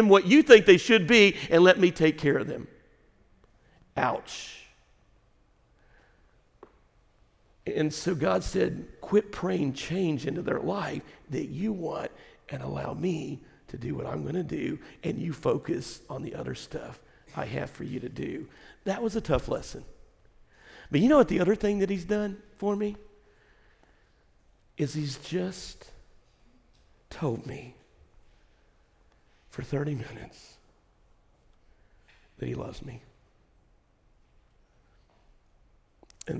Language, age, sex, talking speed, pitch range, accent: English, 50-69, male, 130 wpm, 135-185 Hz, American